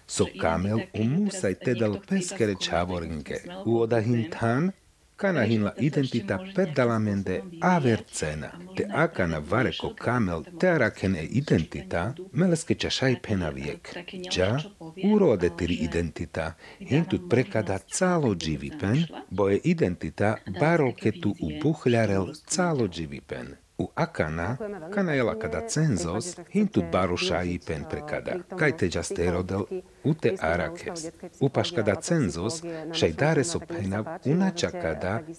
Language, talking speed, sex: Slovak, 115 wpm, male